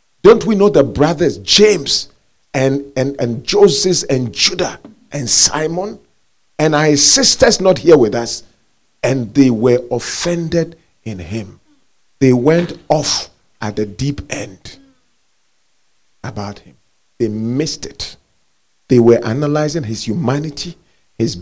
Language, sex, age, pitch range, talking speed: English, male, 40-59, 120-180 Hz, 125 wpm